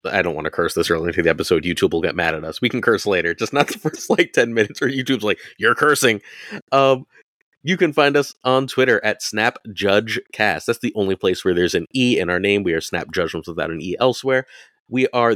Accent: American